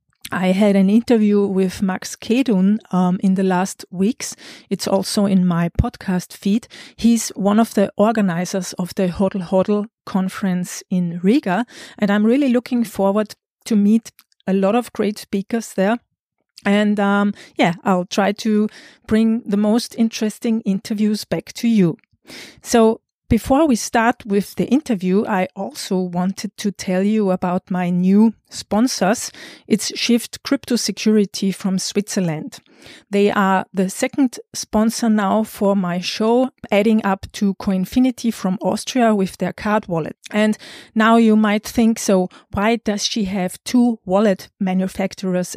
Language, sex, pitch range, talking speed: English, female, 190-230 Hz, 145 wpm